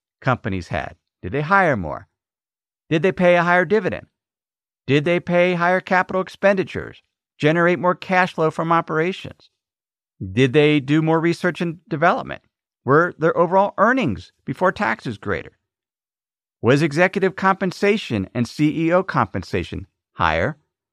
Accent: American